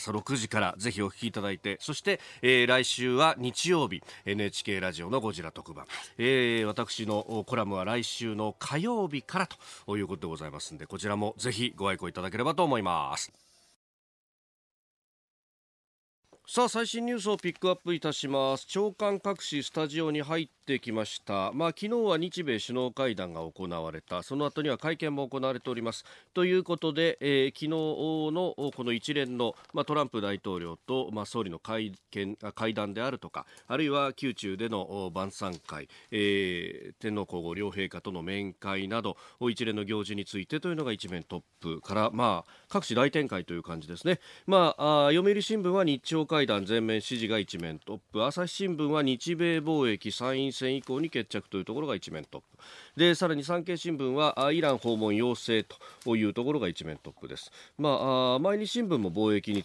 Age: 40-59